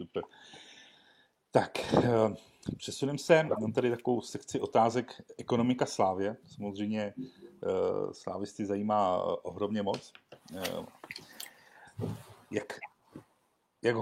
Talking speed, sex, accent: 75 wpm, male, native